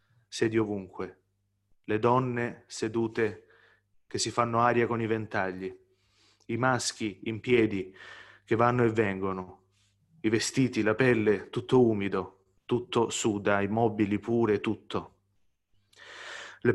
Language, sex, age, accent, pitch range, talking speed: French, male, 30-49, Italian, 100-120 Hz, 120 wpm